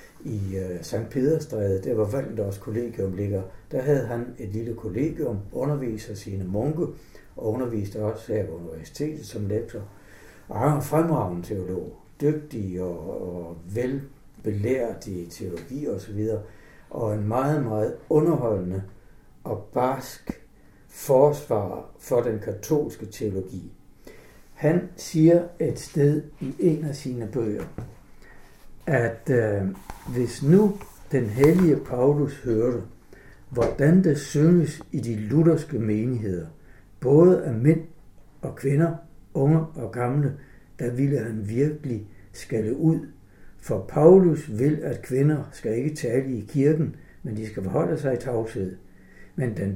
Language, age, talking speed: Danish, 60-79, 125 wpm